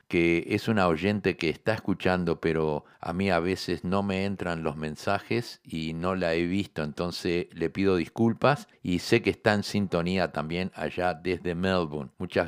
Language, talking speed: Spanish, 180 wpm